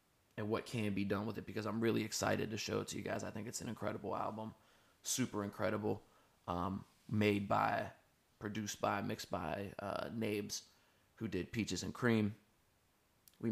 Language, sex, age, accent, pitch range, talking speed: English, male, 20-39, American, 105-115 Hz, 180 wpm